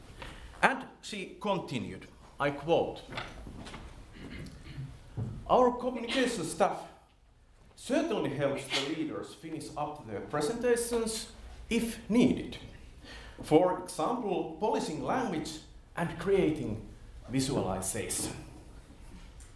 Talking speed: 75 wpm